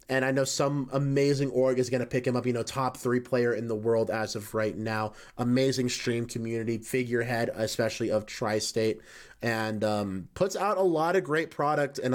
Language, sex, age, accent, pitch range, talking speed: English, male, 30-49, American, 120-150 Hz, 200 wpm